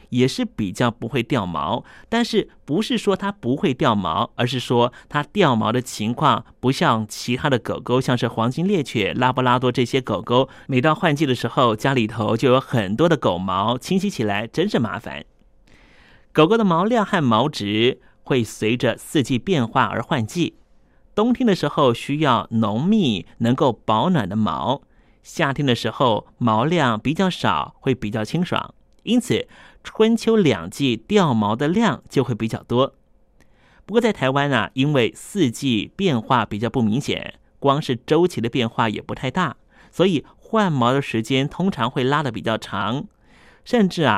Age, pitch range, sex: 30-49, 115-175 Hz, male